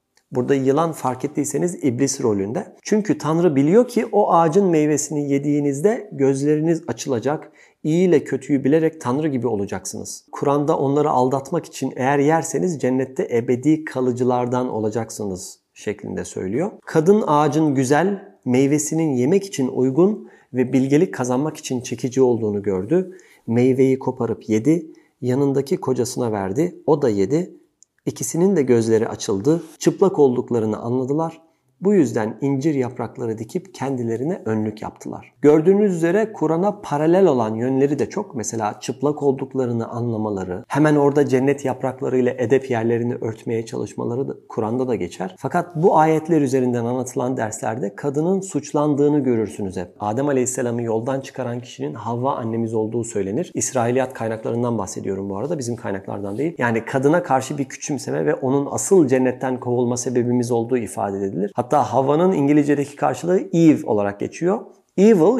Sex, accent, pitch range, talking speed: male, native, 120-155 Hz, 135 wpm